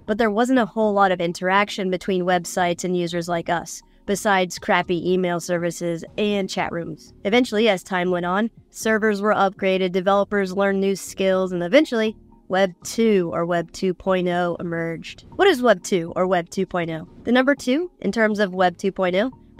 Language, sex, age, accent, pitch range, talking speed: English, female, 20-39, American, 180-220 Hz, 170 wpm